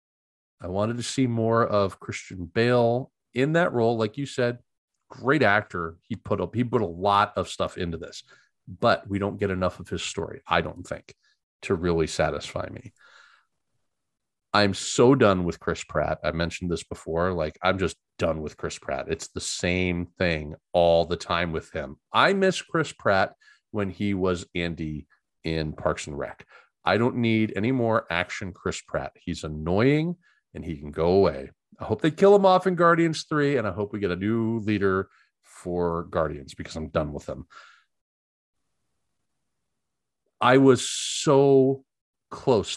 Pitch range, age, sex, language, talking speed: 85-120 Hz, 40-59, male, English, 175 wpm